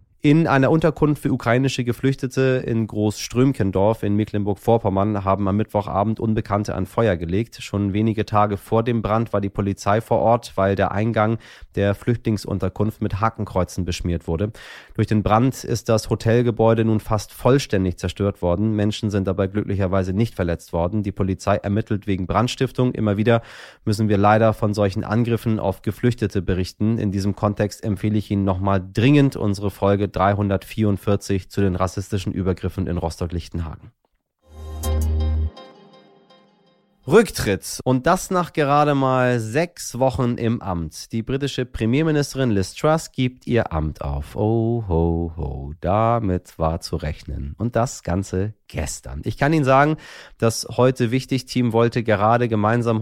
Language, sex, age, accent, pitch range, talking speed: German, male, 30-49, German, 95-120 Hz, 145 wpm